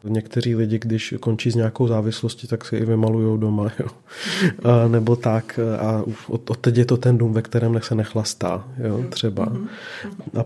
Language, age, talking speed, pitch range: Czech, 30-49, 180 wpm, 110-125 Hz